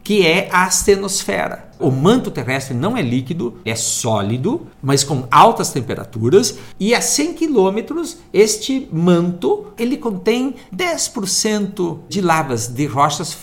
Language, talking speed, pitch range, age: Portuguese, 130 wpm, 135-210 Hz, 50-69